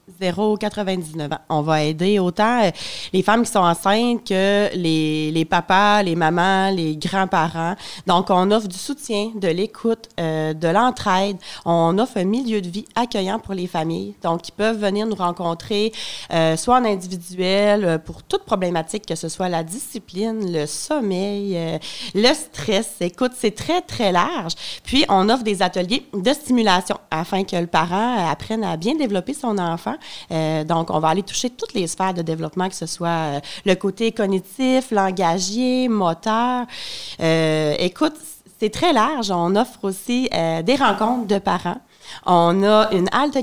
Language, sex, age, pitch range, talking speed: French, female, 30-49, 170-220 Hz, 165 wpm